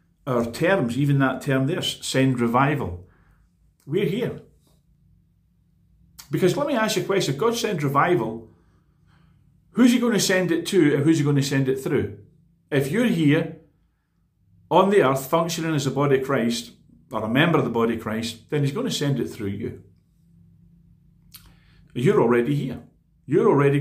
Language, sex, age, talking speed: English, male, 50-69, 175 wpm